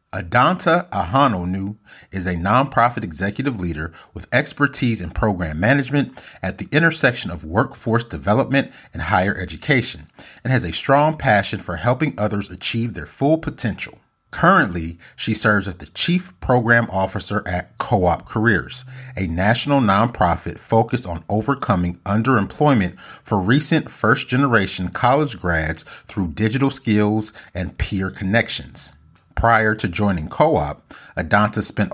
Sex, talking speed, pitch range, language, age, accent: male, 130 wpm, 90-115 Hz, English, 30-49, American